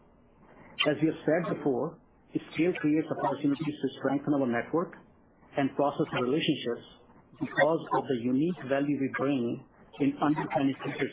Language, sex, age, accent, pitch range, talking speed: English, male, 50-69, Indian, 135-155 Hz, 135 wpm